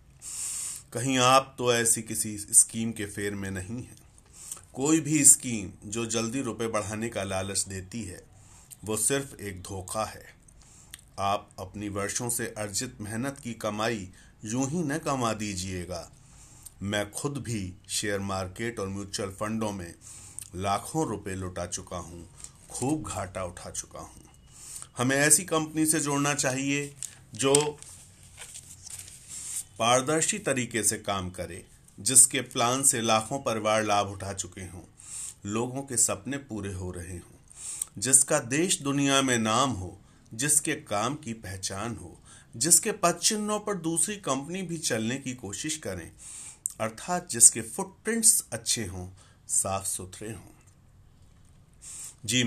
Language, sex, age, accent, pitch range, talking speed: Hindi, male, 50-69, native, 100-135 Hz, 135 wpm